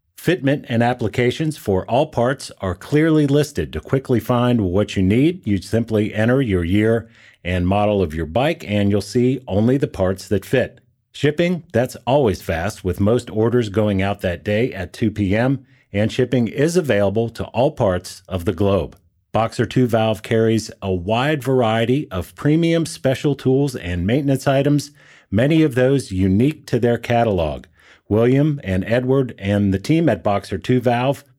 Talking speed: 165 wpm